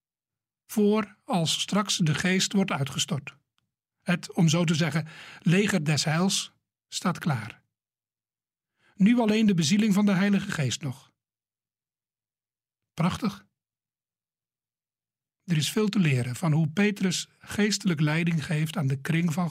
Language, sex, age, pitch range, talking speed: Dutch, male, 60-79, 135-190 Hz, 130 wpm